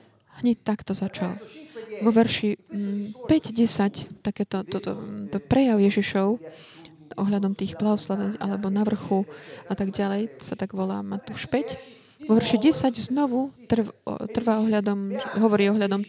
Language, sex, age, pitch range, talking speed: Slovak, female, 20-39, 200-235 Hz, 140 wpm